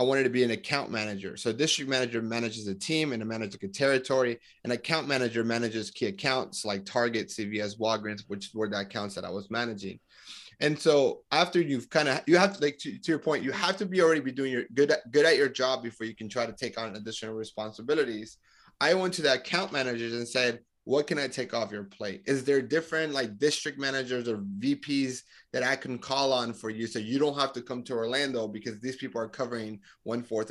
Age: 30-49